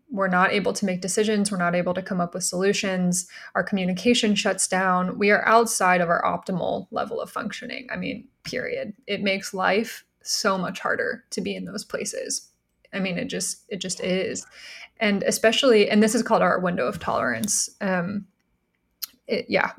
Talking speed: 180 wpm